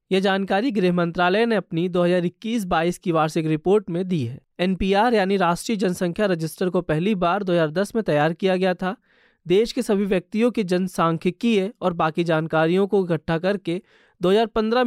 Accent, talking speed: native, 165 wpm